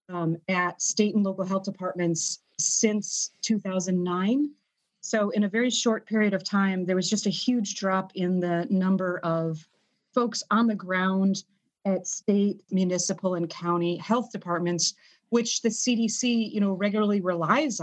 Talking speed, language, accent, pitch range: 145 wpm, English, American, 185-230 Hz